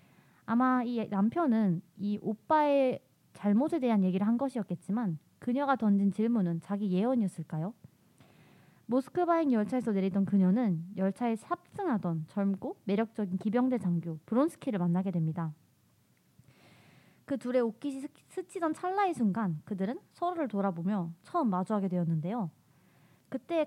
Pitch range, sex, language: 180-250 Hz, female, Korean